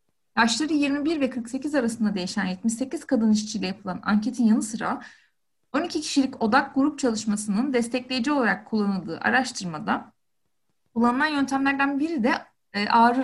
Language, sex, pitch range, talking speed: Turkish, female, 210-265 Hz, 120 wpm